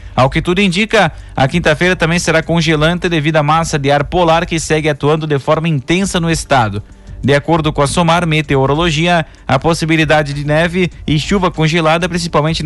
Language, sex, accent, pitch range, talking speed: Portuguese, male, Brazilian, 145-170 Hz, 175 wpm